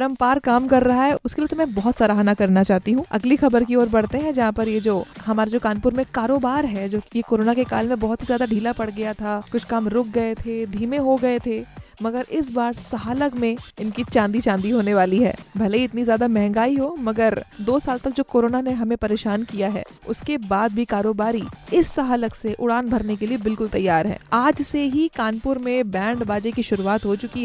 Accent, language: native, Hindi